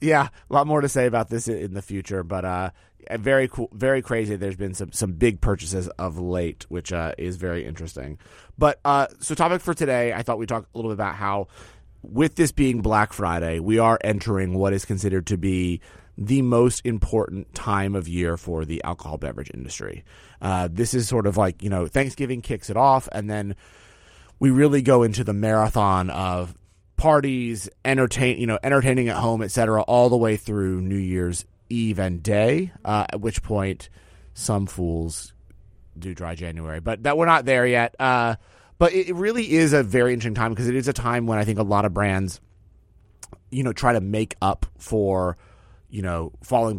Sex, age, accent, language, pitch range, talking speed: male, 30-49, American, English, 95-125 Hz, 200 wpm